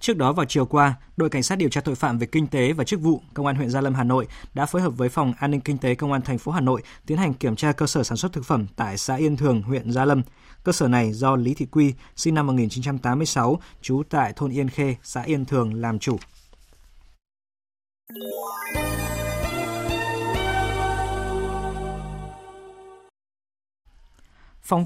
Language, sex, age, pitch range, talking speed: Vietnamese, male, 20-39, 125-155 Hz, 190 wpm